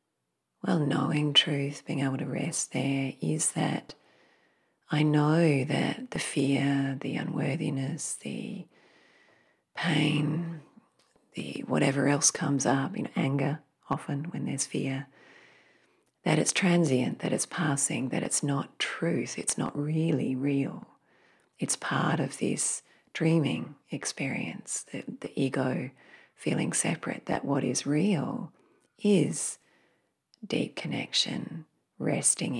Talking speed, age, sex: 120 wpm, 40-59, female